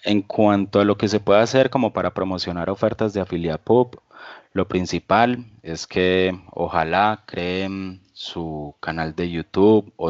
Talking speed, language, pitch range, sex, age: 150 wpm, Spanish, 85-100 Hz, male, 20-39